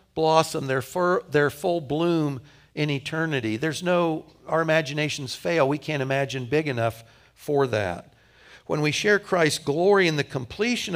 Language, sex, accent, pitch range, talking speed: English, male, American, 130-160 Hz, 155 wpm